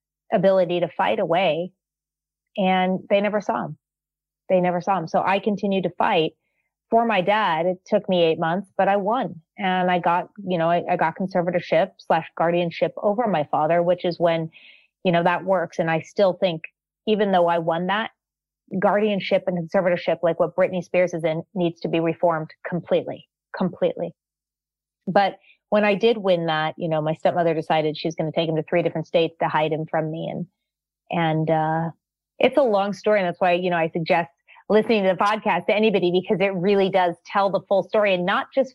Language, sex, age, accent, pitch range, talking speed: English, female, 30-49, American, 165-200 Hz, 205 wpm